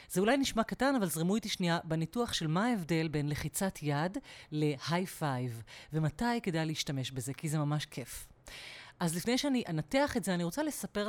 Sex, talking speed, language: female, 180 wpm, Hebrew